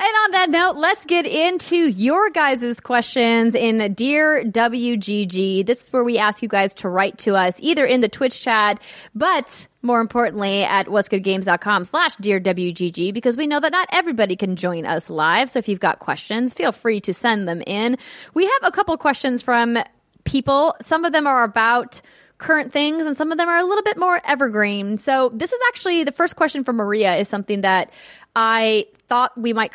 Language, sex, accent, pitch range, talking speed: English, female, American, 195-270 Hz, 200 wpm